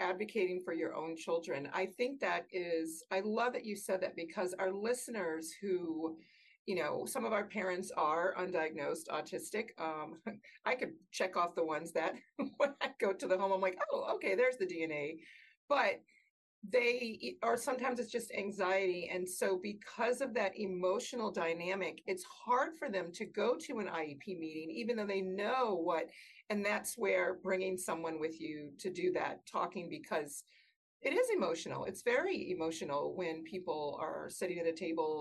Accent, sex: American, female